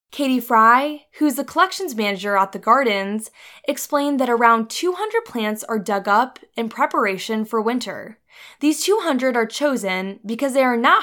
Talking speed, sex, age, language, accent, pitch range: 165 wpm, female, 10-29, English, American, 210-280 Hz